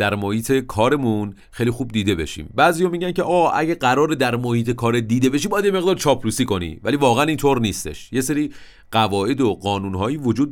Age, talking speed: 40-59, 195 wpm